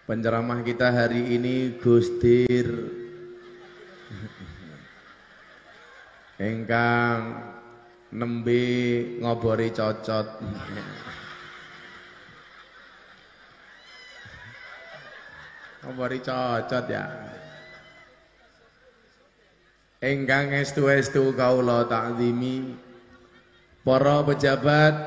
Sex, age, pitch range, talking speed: male, 20-39, 115-135 Hz, 45 wpm